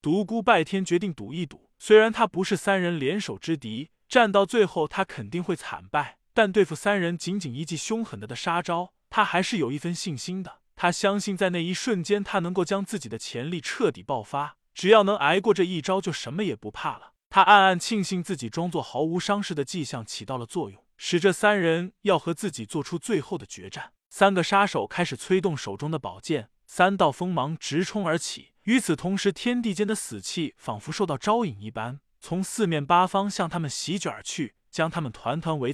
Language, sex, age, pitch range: Chinese, male, 20-39, 145-200 Hz